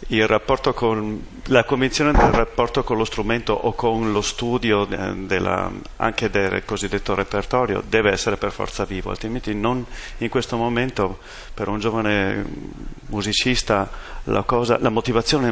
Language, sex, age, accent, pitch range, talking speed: Italian, male, 40-59, native, 100-115 Hz, 145 wpm